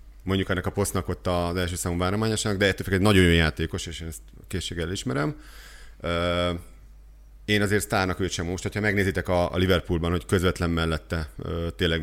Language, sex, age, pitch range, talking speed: Hungarian, male, 30-49, 85-100 Hz, 170 wpm